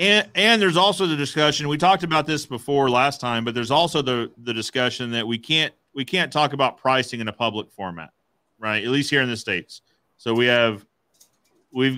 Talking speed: 210 wpm